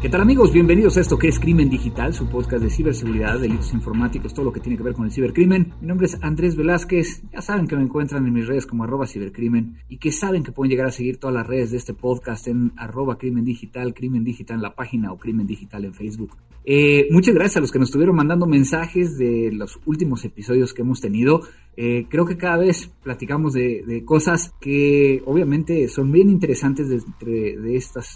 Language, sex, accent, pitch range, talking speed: Spanish, male, Mexican, 115-155 Hz, 220 wpm